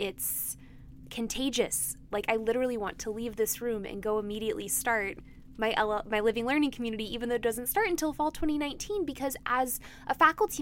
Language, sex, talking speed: English, female, 180 wpm